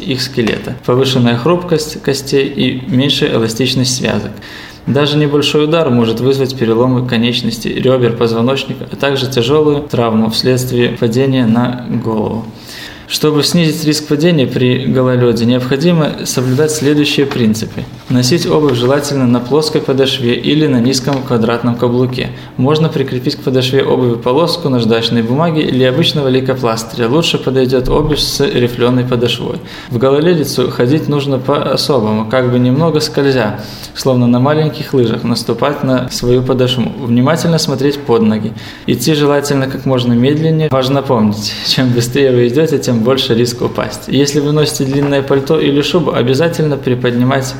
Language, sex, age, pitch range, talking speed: Russian, male, 20-39, 120-145 Hz, 140 wpm